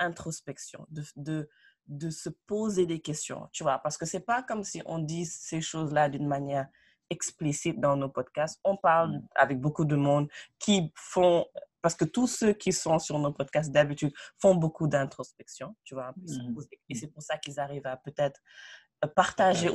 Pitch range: 150-185 Hz